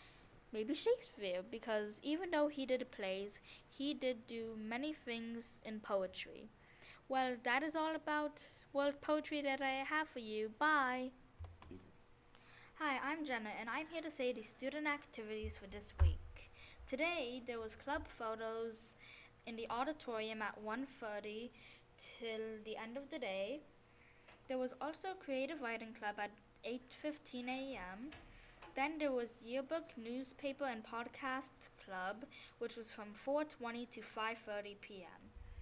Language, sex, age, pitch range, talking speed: English, female, 20-39, 210-270 Hz, 140 wpm